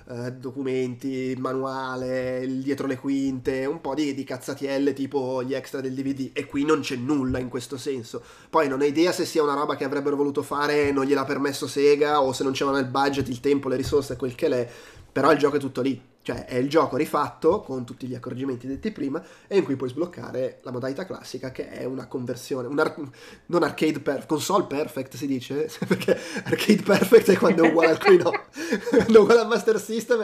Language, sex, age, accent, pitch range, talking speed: Italian, male, 20-39, native, 130-160 Hz, 215 wpm